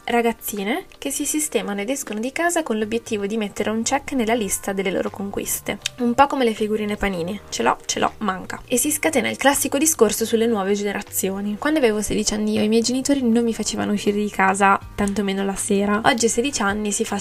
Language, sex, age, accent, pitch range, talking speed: Italian, female, 20-39, native, 210-235 Hz, 215 wpm